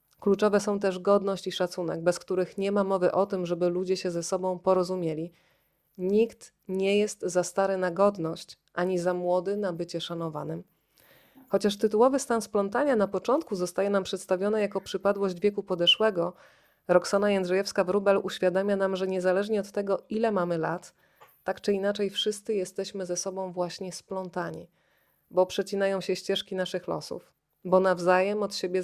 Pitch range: 185-205 Hz